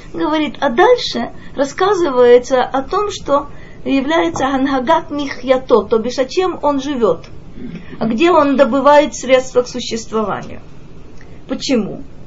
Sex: female